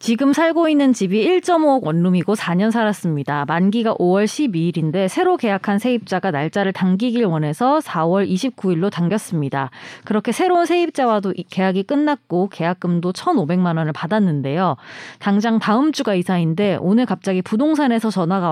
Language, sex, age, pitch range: Korean, female, 30-49, 175-250 Hz